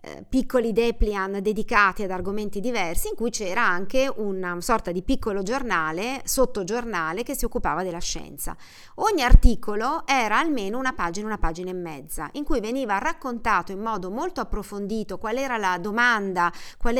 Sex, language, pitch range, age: female, Italian, 200-265 Hz, 40-59